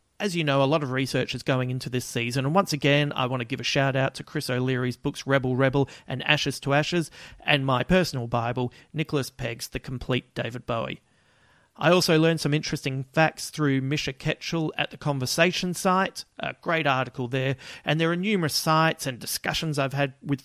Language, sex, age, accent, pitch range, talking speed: English, male, 40-59, Australian, 130-160 Hz, 200 wpm